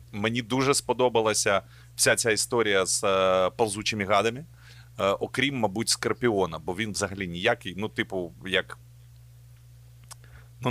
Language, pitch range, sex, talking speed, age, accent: Ukrainian, 95-120 Hz, male, 125 wpm, 30-49, native